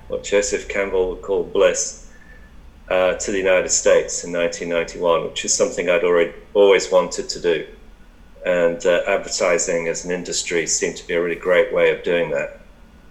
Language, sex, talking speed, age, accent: English, male, 185 wpm, 40-59, British